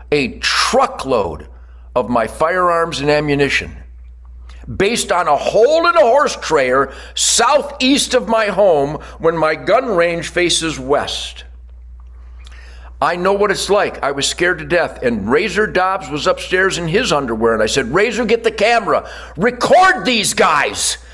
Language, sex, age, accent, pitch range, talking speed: English, male, 60-79, American, 130-210 Hz, 150 wpm